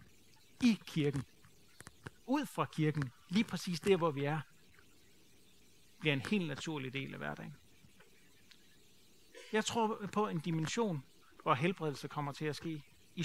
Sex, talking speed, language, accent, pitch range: male, 135 wpm, Danish, native, 155-210 Hz